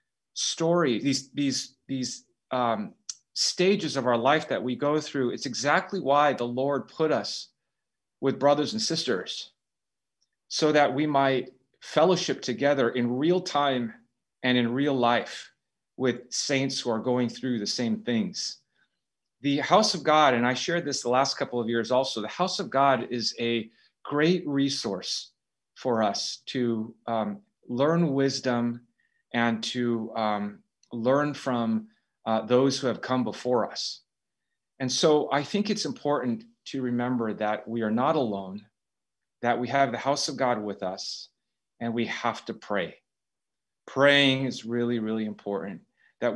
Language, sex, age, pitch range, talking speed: English, male, 30-49, 120-145 Hz, 155 wpm